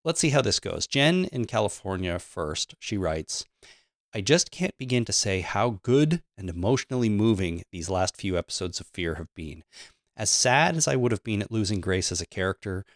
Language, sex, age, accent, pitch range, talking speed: English, male, 30-49, American, 90-120 Hz, 200 wpm